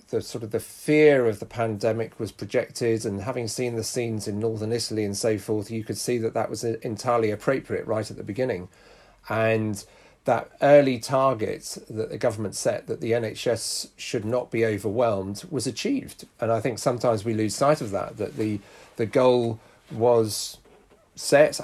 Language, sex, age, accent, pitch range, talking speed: English, male, 40-59, British, 110-125 Hz, 175 wpm